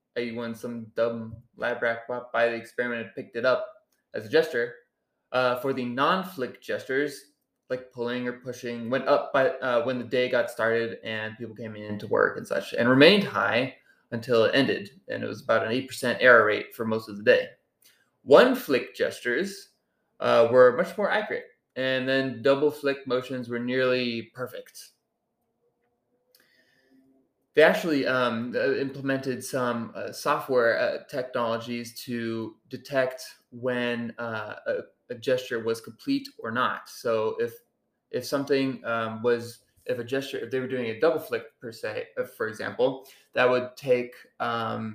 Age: 20-39